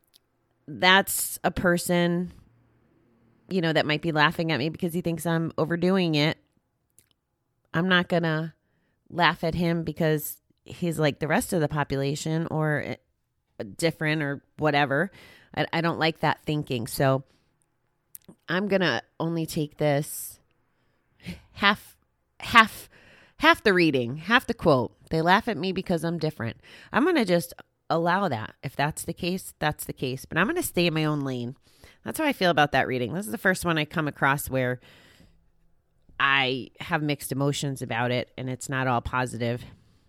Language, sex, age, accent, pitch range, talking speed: English, female, 30-49, American, 130-175 Hz, 170 wpm